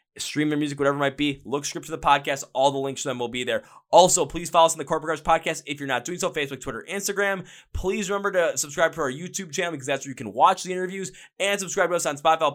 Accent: American